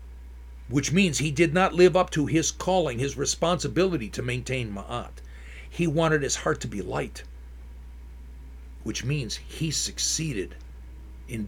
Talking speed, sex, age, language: 140 wpm, male, 50-69, English